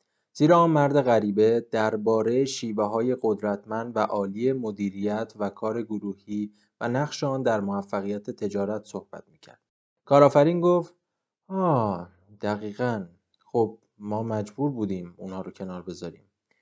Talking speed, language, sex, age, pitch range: 110 wpm, Persian, male, 20-39, 100-120 Hz